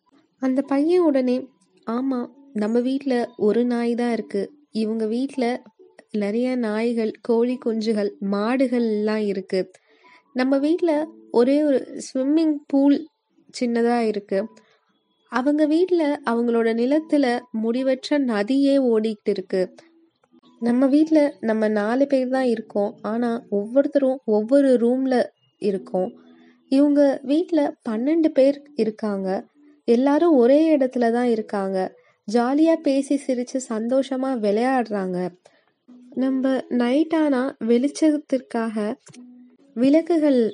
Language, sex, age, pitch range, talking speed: Tamil, female, 20-39, 215-275 Hz, 95 wpm